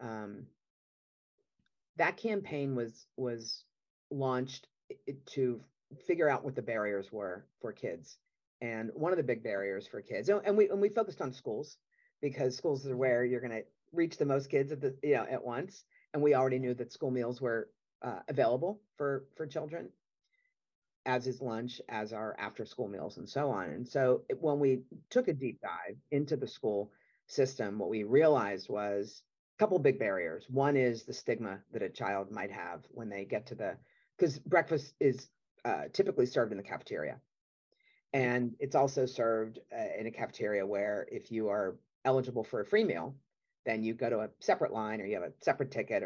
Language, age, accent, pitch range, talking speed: English, 40-59, American, 115-175 Hz, 190 wpm